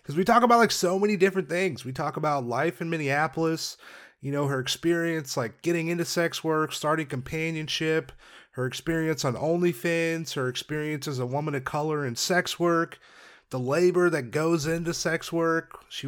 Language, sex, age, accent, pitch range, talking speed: English, male, 30-49, American, 135-170 Hz, 180 wpm